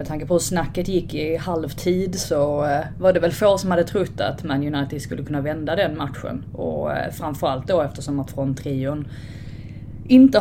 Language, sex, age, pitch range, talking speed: Swedish, female, 20-39, 130-175 Hz, 180 wpm